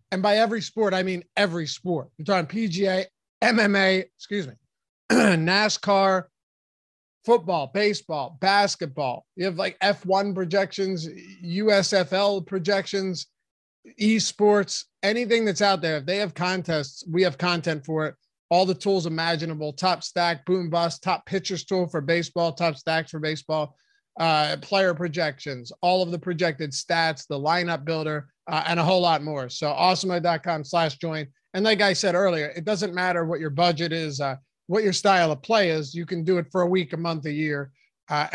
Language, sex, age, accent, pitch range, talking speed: English, male, 30-49, American, 160-200 Hz, 170 wpm